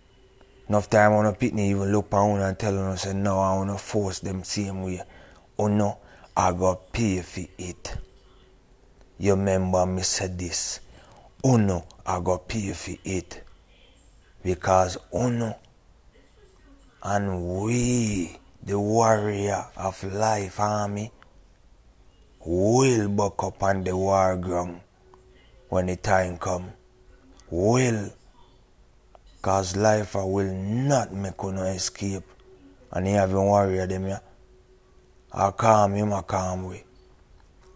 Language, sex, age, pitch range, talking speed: English, male, 30-49, 95-105 Hz, 130 wpm